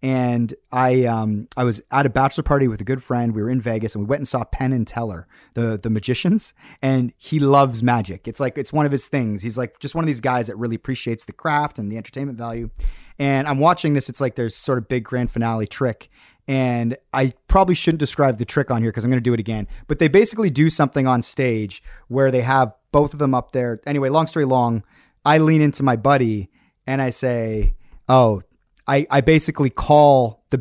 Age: 30-49